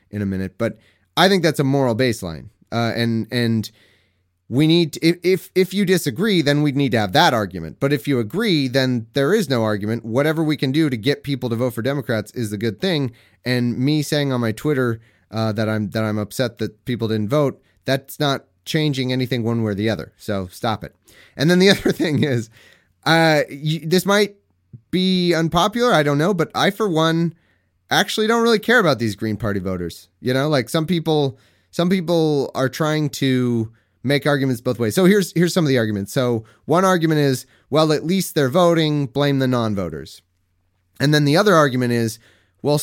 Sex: male